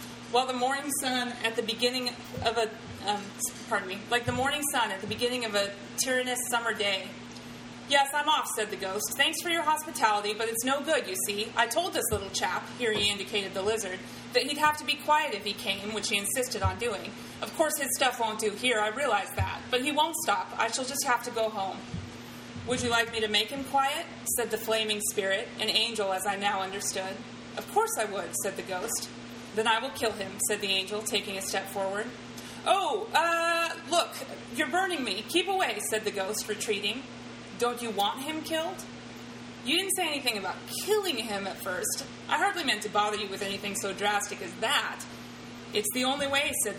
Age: 30-49